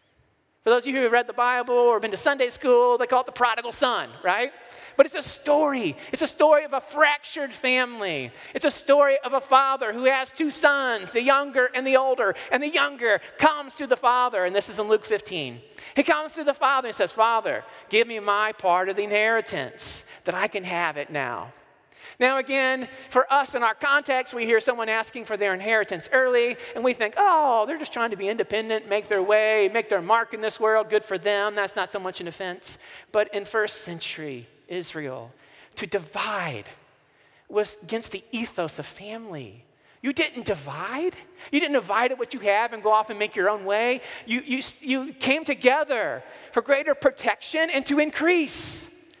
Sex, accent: male, American